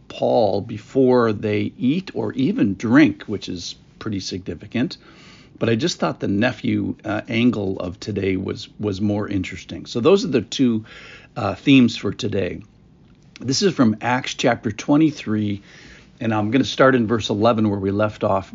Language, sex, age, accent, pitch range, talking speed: English, male, 50-69, American, 100-130 Hz, 170 wpm